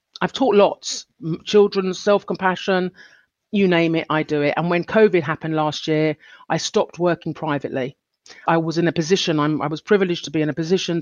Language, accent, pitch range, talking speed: English, British, 155-185 Hz, 190 wpm